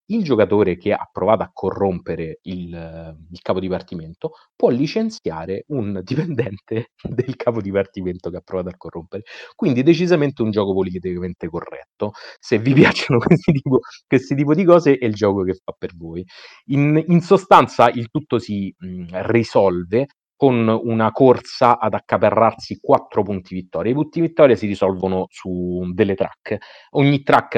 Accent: native